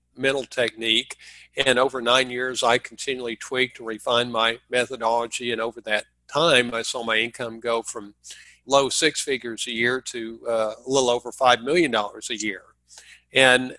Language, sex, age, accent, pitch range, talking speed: English, male, 50-69, American, 115-135 Hz, 170 wpm